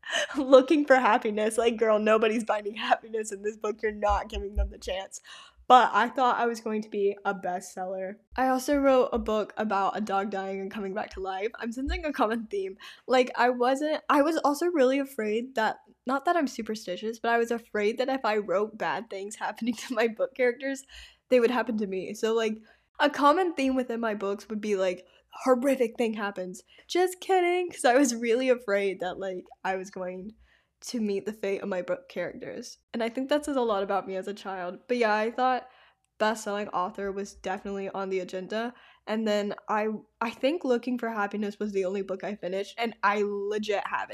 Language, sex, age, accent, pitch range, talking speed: English, female, 10-29, American, 195-245 Hz, 210 wpm